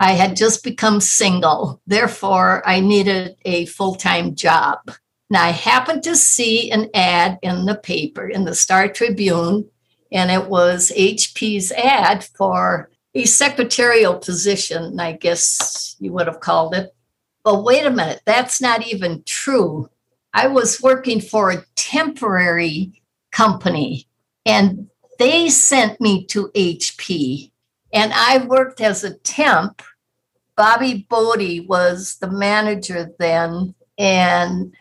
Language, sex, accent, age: English, female, American, 60-79